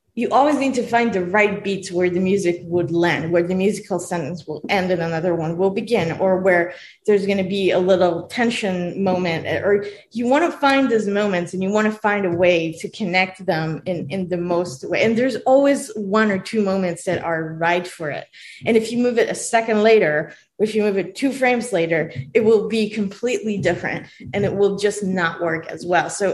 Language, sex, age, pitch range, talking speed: English, female, 20-39, 175-215 Hz, 220 wpm